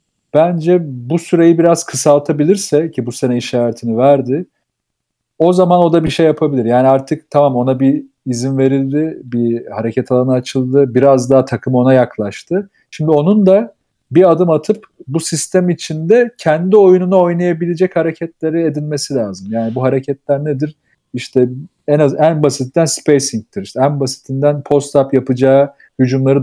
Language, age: Turkish, 40-59